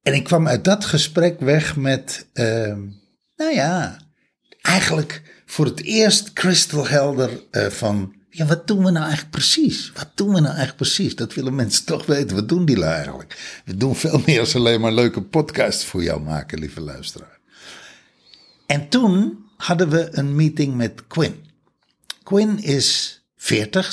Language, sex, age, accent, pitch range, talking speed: Dutch, male, 60-79, Dutch, 120-170 Hz, 170 wpm